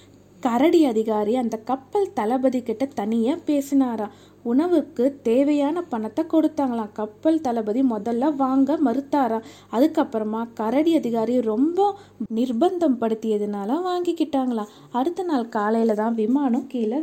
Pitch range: 225-285 Hz